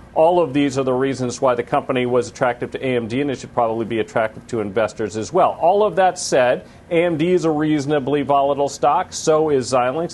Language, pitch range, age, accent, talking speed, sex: English, 130-160 Hz, 40-59, American, 215 wpm, male